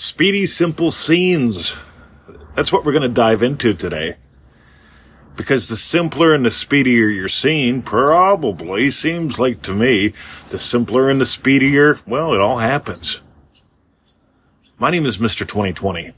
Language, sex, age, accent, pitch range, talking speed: English, male, 40-59, American, 90-125 Hz, 140 wpm